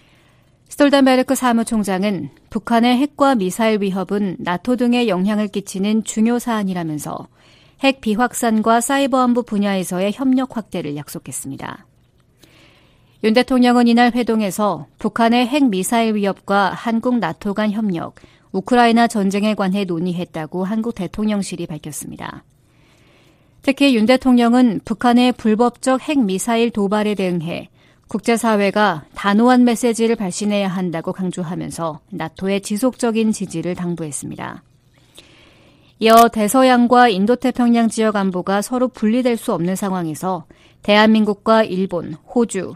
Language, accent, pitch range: Korean, native, 190-240 Hz